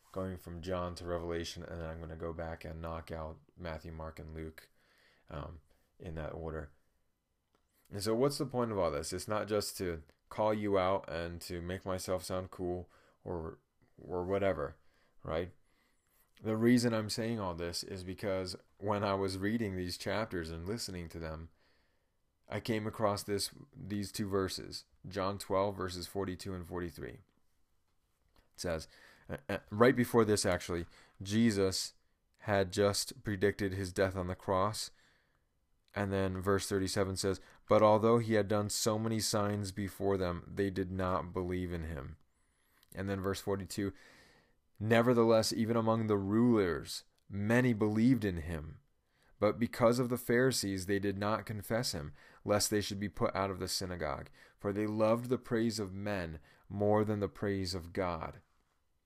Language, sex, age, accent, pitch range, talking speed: English, male, 20-39, American, 85-105 Hz, 165 wpm